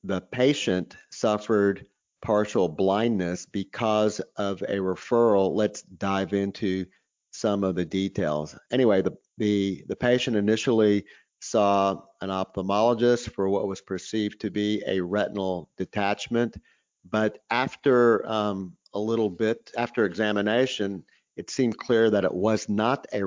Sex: male